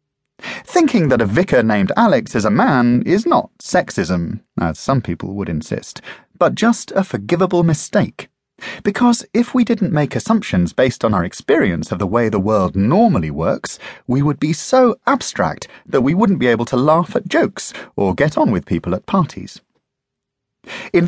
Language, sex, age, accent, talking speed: English, male, 30-49, British, 175 wpm